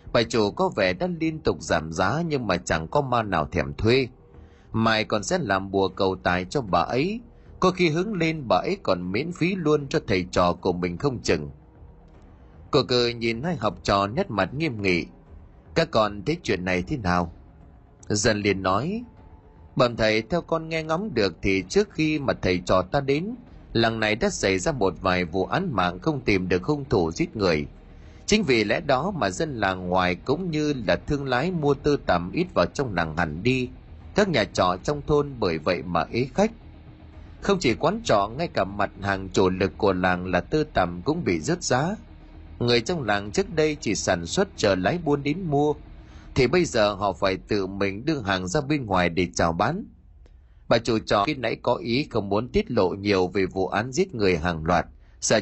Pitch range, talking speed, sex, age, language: 90-145 Hz, 210 wpm, male, 20-39, Vietnamese